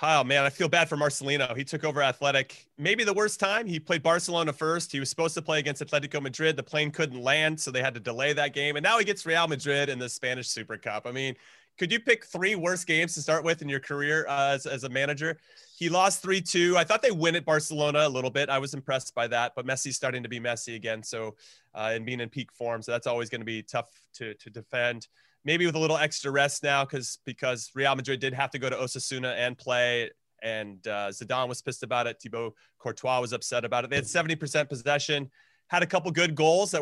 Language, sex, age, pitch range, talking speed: English, male, 30-49, 125-160 Hz, 245 wpm